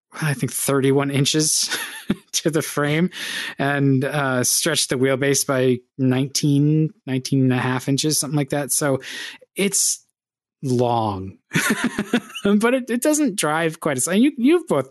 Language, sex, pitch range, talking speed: English, male, 130-170 Hz, 145 wpm